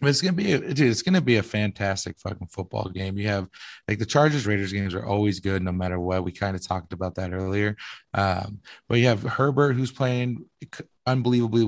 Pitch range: 95-115 Hz